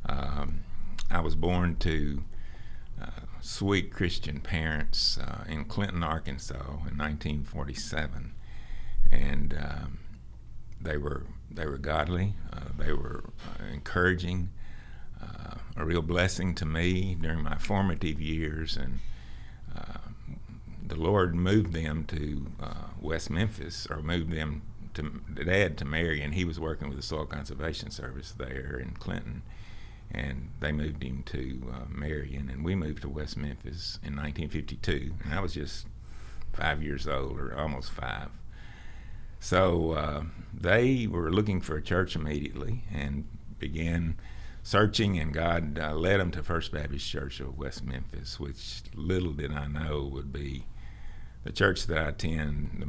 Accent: American